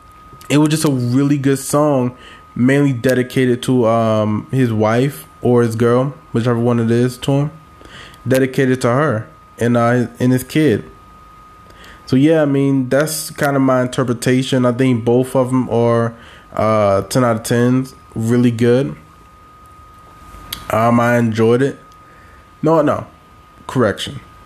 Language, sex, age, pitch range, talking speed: English, male, 20-39, 115-135 Hz, 140 wpm